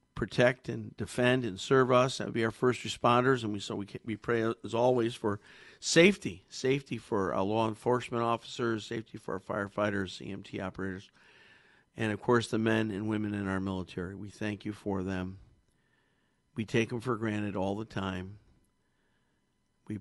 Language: English